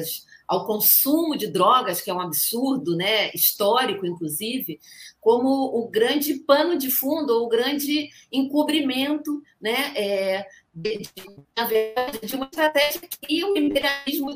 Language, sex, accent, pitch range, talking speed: Portuguese, female, Brazilian, 195-265 Hz, 110 wpm